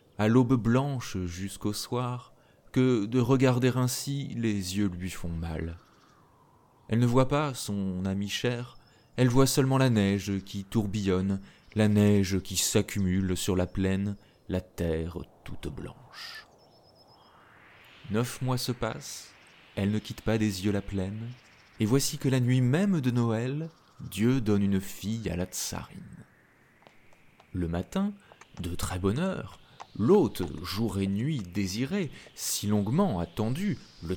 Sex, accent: male, French